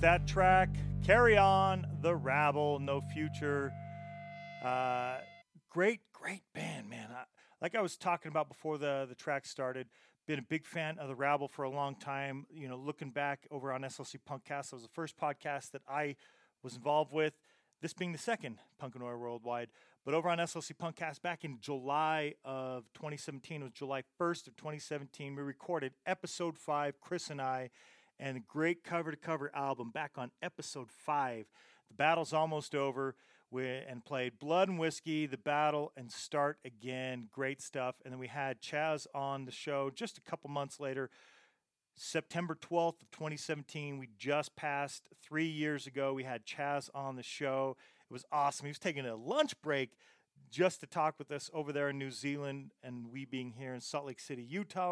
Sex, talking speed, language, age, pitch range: male, 180 wpm, English, 40-59, 135-160 Hz